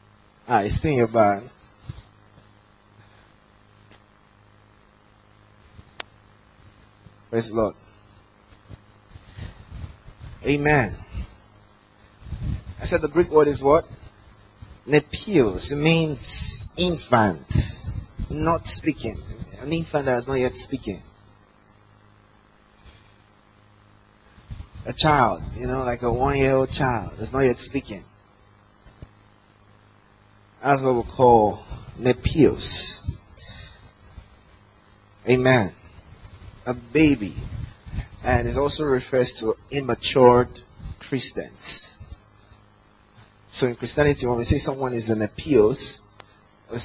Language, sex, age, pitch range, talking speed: English, male, 20-39, 105-125 Hz, 90 wpm